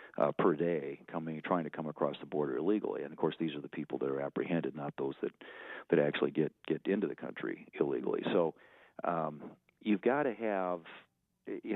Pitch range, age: 75-85 Hz, 50-69